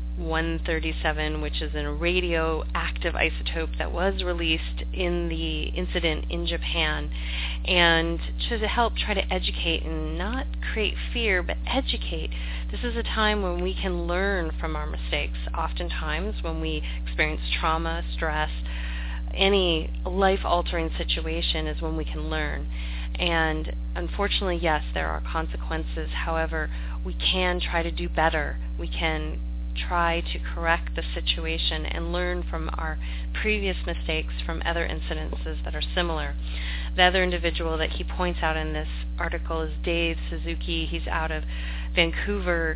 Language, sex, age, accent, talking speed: English, female, 30-49, American, 140 wpm